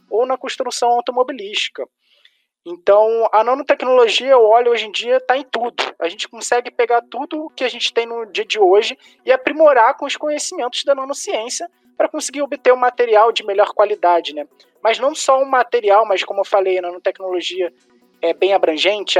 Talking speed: 185 wpm